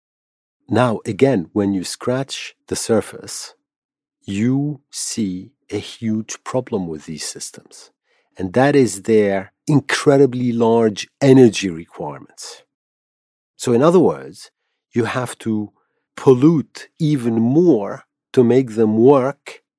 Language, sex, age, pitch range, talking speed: English, male, 50-69, 110-145 Hz, 110 wpm